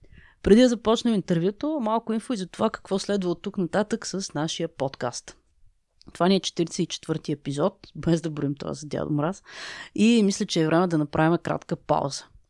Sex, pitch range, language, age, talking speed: female, 160-215 Hz, Bulgarian, 30-49, 185 wpm